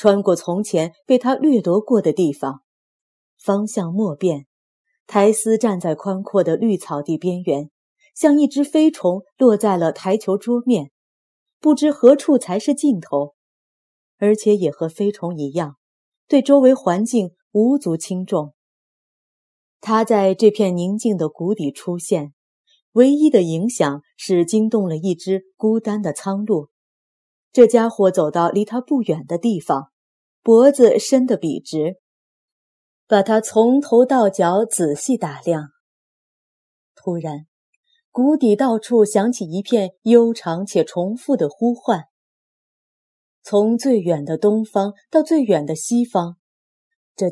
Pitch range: 175-240 Hz